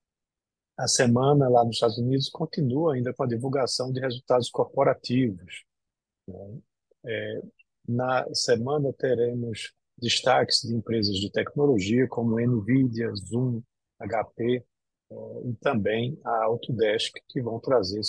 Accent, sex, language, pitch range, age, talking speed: Brazilian, male, Portuguese, 115-135 Hz, 50-69, 110 wpm